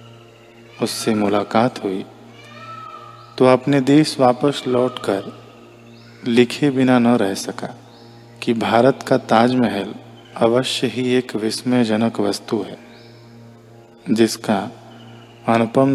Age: 40-59